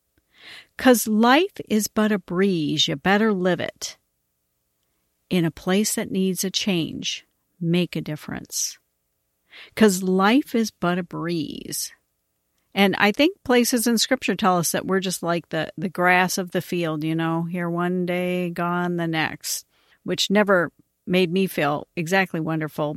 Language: English